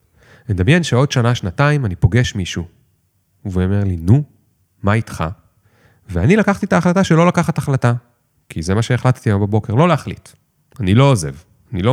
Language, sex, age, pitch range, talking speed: Hebrew, male, 30-49, 95-140 Hz, 170 wpm